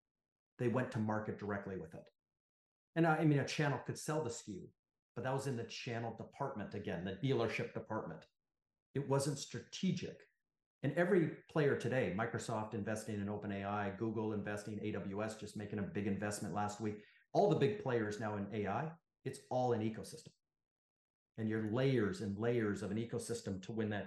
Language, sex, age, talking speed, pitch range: English, male, 40-59, 180 wpm, 105-125 Hz